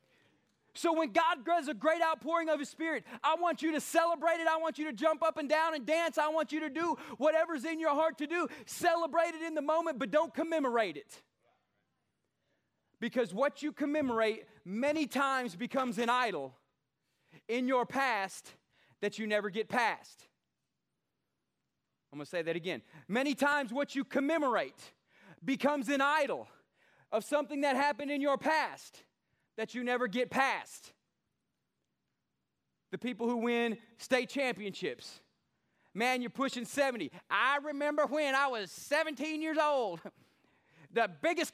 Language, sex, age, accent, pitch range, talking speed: English, male, 30-49, American, 245-315 Hz, 155 wpm